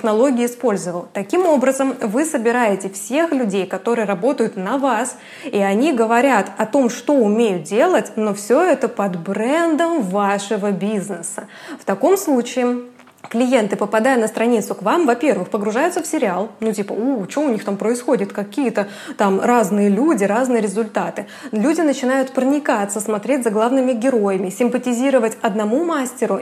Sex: female